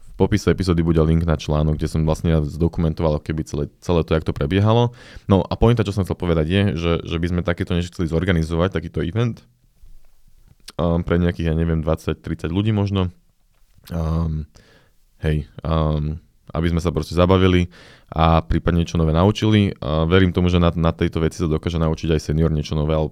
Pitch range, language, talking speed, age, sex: 80-90 Hz, Slovak, 190 wpm, 20-39, male